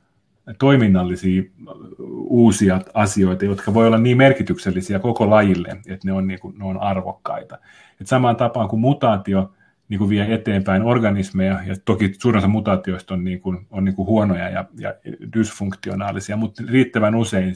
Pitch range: 95-115 Hz